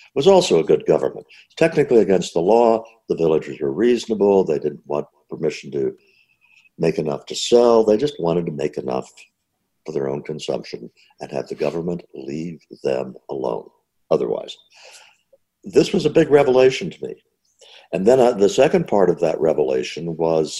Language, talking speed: English, 165 wpm